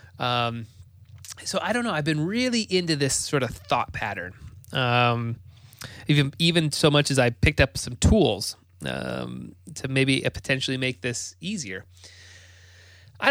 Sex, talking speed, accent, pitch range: male, 150 wpm, American, 95-140 Hz